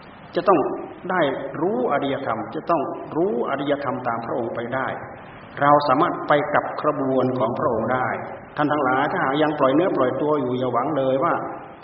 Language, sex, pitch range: Thai, male, 130-170 Hz